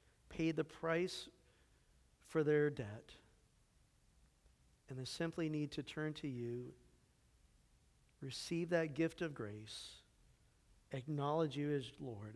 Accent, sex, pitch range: American, male, 125-150 Hz